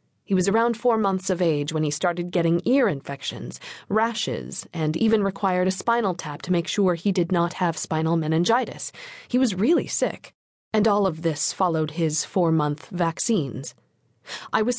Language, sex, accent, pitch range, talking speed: English, female, American, 165-215 Hz, 180 wpm